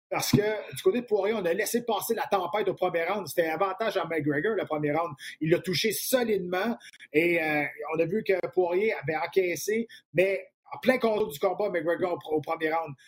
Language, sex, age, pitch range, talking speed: French, male, 30-49, 165-215 Hz, 215 wpm